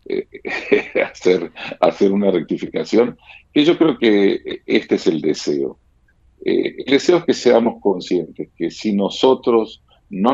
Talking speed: 140 wpm